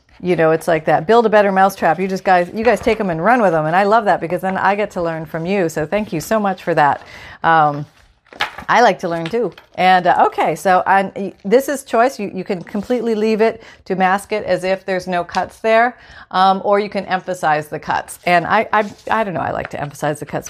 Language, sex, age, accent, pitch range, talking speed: English, female, 40-59, American, 165-215 Hz, 255 wpm